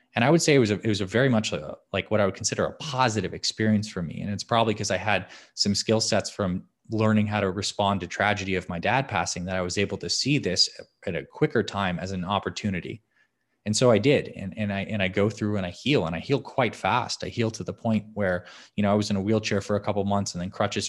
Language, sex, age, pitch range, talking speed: English, male, 20-39, 95-110 Hz, 265 wpm